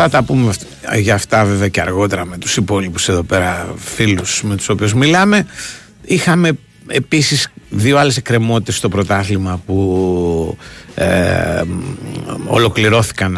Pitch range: 95-120 Hz